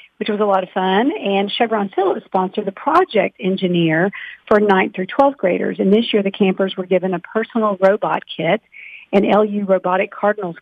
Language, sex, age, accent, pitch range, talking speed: English, female, 50-69, American, 170-205 Hz, 185 wpm